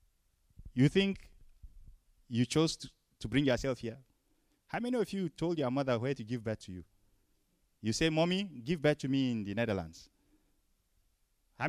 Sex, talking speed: male, 170 wpm